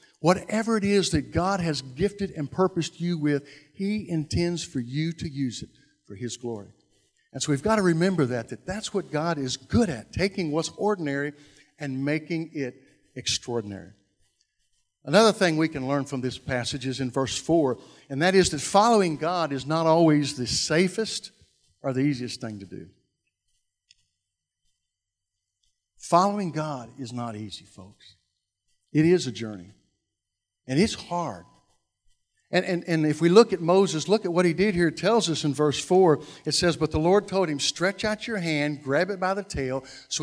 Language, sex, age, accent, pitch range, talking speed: English, male, 60-79, American, 125-175 Hz, 180 wpm